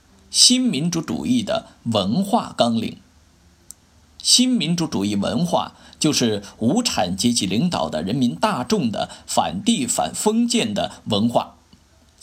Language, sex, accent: Chinese, male, native